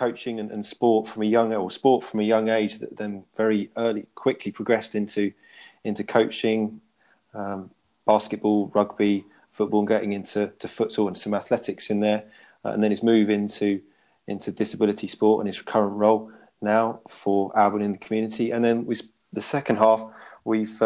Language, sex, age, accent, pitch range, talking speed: English, male, 30-49, British, 100-110 Hz, 175 wpm